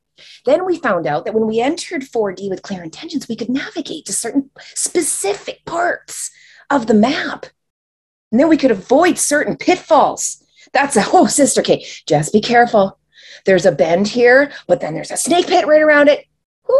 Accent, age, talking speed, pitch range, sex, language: American, 30-49, 180 wpm, 195-295 Hz, female, English